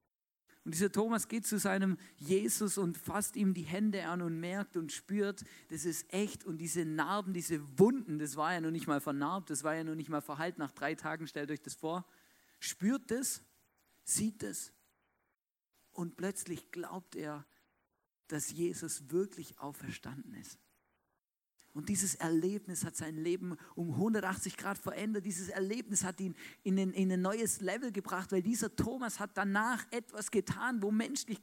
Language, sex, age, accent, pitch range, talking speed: German, male, 50-69, German, 170-235 Hz, 170 wpm